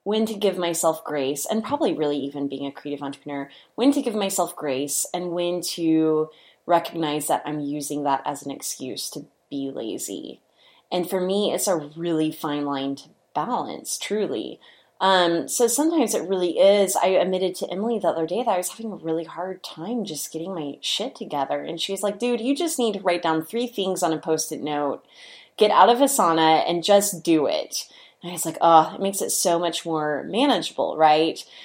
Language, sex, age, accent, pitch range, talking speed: English, female, 20-39, American, 155-200 Hz, 205 wpm